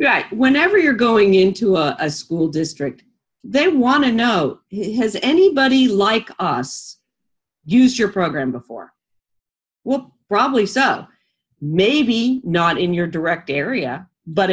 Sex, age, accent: female, 50-69, American